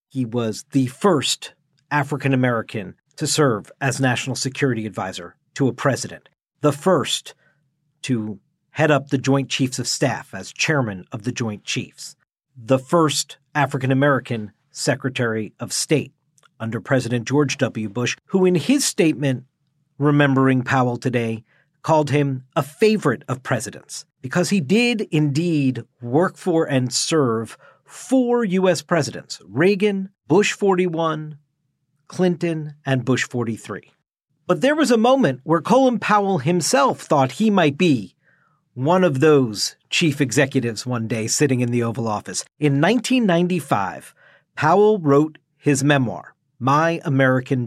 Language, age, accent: English, 50-69, American